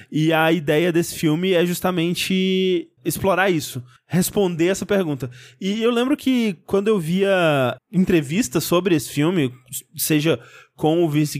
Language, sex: Portuguese, male